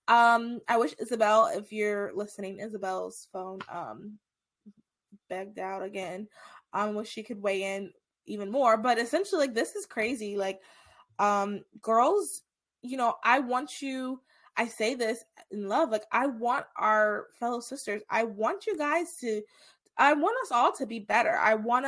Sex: female